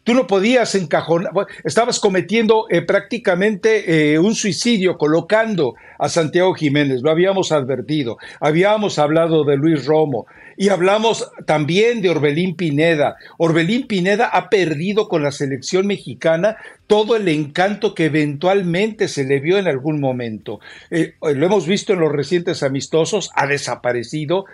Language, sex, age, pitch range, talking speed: Spanish, male, 60-79, 150-195 Hz, 140 wpm